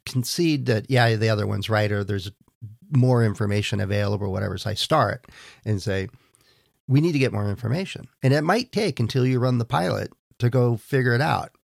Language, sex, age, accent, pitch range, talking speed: English, male, 50-69, American, 105-130 Hz, 195 wpm